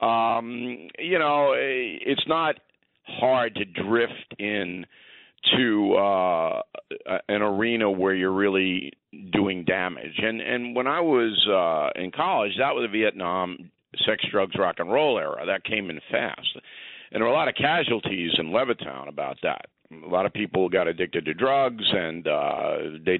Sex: male